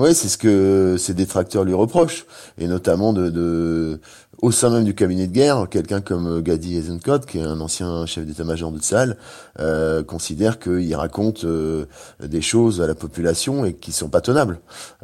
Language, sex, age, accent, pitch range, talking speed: French, male, 30-49, French, 85-110 Hz, 190 wpm